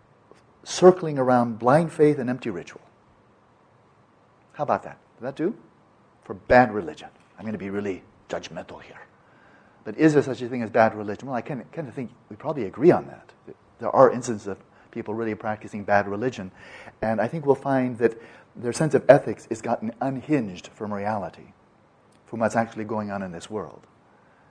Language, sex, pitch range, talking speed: English, male, 110-150 Hz, 180 wpm